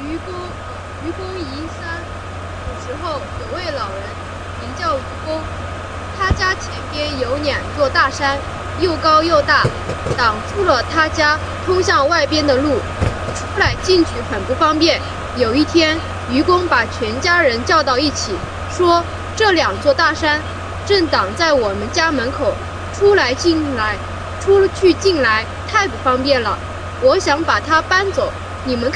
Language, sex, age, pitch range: English, female, 20-39, 260-360 Hz